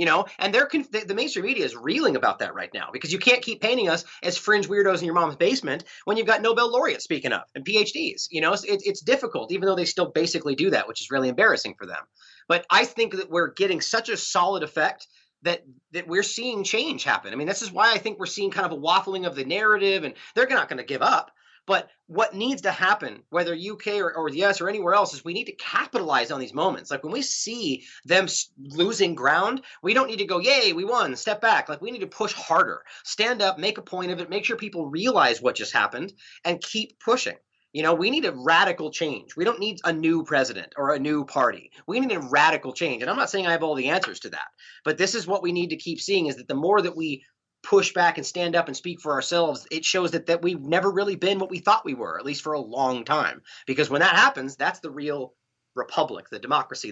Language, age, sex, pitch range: English, 30-49, male, 155-215 Hz